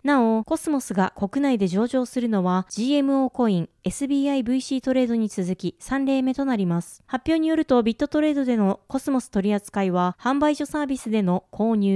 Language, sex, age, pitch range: Japanese, female, 20-39, 195-275 Hz